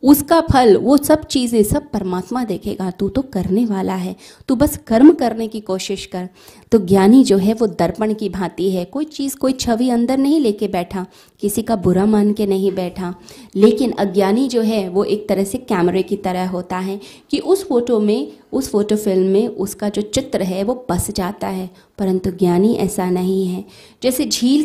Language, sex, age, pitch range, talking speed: Hindi, female, 20-39, 190-245 Hz, 195 wpm